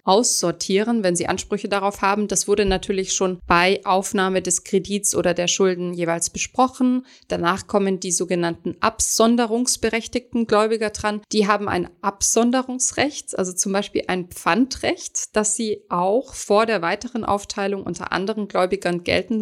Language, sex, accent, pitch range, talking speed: German, female, German, 180-220 Hz, 140 wpm